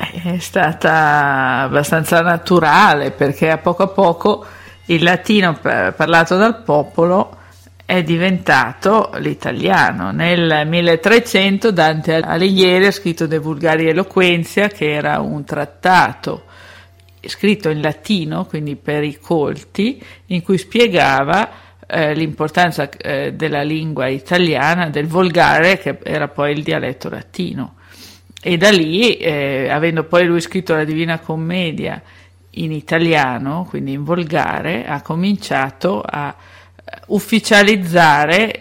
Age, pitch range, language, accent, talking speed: 50-69, 145-180 Hz, Italian, native, 115 wpm